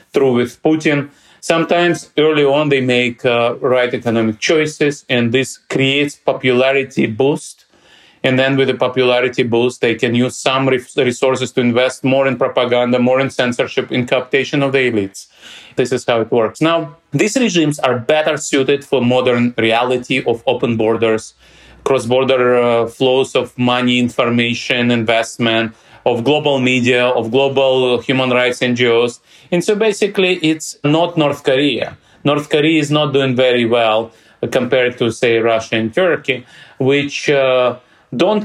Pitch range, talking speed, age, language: 115-135 Hz, 150 wpm, 30-49, English